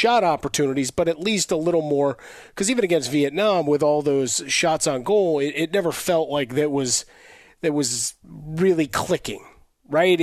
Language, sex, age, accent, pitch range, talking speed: English, male, 40-59, American, 135-160 Hz, 175 wpm